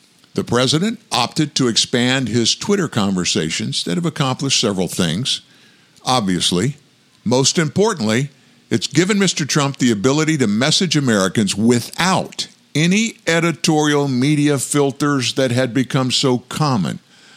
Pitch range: 110-150 Hz